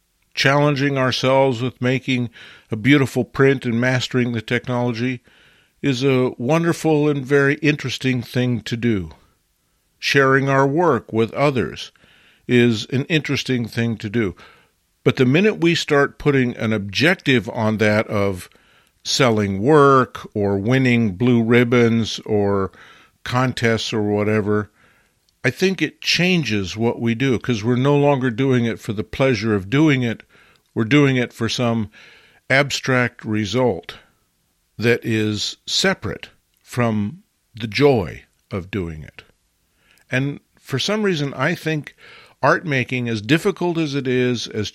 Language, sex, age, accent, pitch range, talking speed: English, male, 50-69, American, 110-140 Hz, 135 wpm